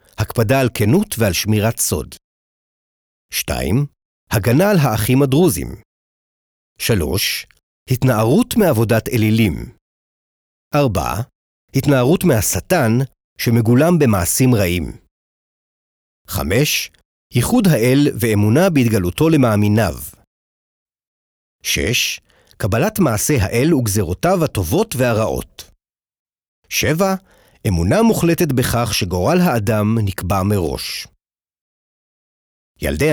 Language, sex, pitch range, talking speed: Hebrew, male, 105-150 Hz, 80 wpm